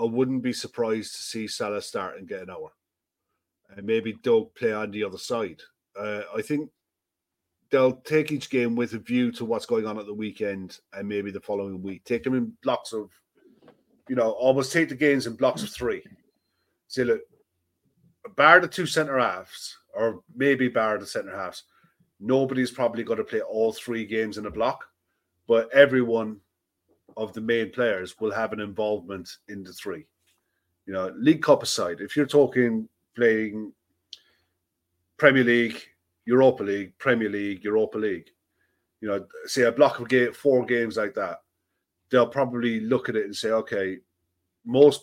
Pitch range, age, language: 105-130 Hz, 30-49, English